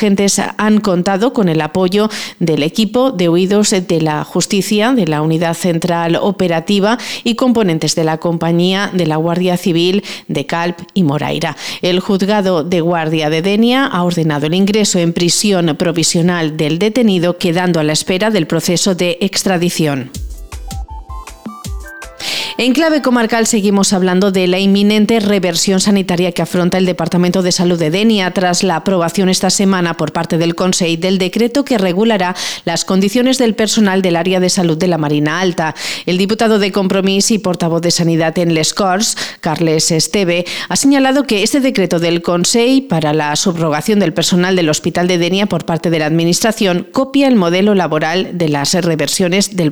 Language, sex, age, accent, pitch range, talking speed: Spanish, female, 40-59, Spanish, 170-205 Hz, 170 wpm